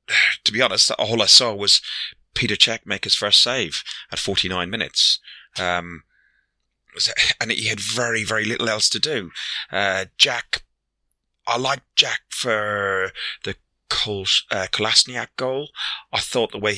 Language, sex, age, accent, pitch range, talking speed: English, male, 30-49, British, 90-110 Hz, 150 wpm